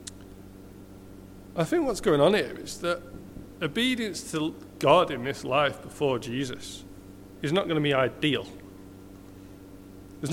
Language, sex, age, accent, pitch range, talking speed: English, male, 40-59, British, 95-150 Hz, 135 wpm